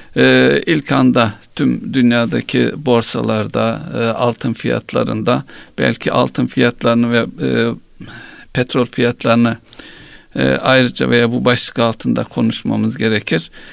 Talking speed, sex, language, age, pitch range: 105 wpm, male, Turkish, 60-79, 115-130 Hz